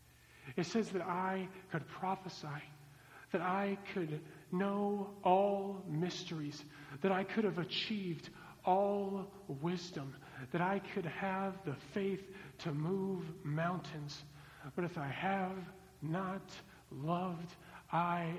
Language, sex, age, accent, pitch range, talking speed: English, male, 50-69, American, 150-195 Hz, 115 wpm